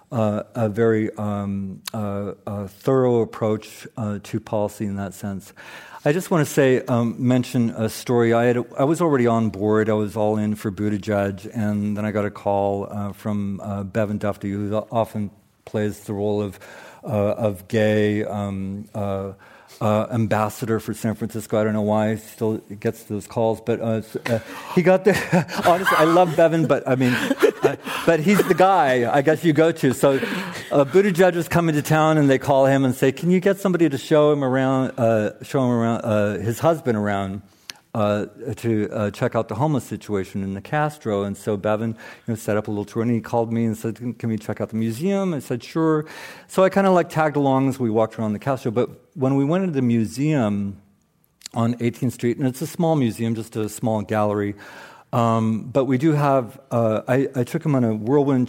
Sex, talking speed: male, 210 wpm